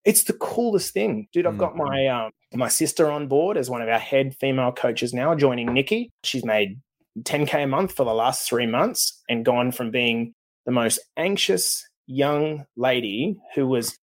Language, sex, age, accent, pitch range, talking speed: English, male, 20-39, Australian, 125-175 Hz, 185 wpm